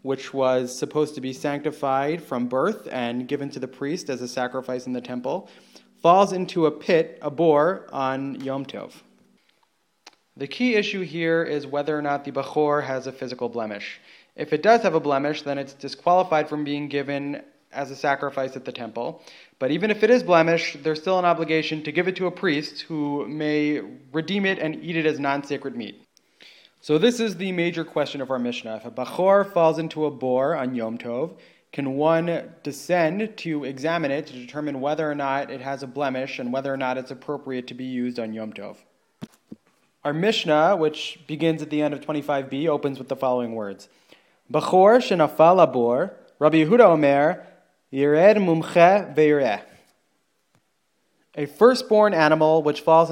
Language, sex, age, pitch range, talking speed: English, male, 30-49, 135-165 Hz, 180 wpm